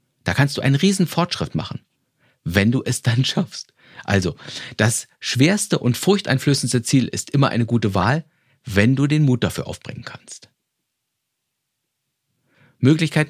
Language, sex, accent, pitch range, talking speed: German, male, German, 115-150 Hz, 140 wpm